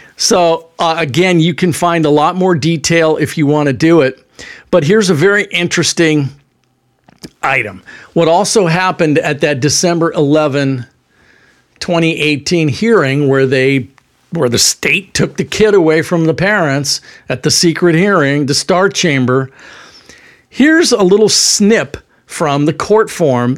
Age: 50-69